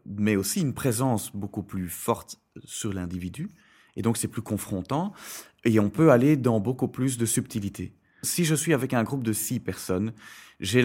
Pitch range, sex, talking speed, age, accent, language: 100-120 Hz, male, 185 wpm, 30-49, French, French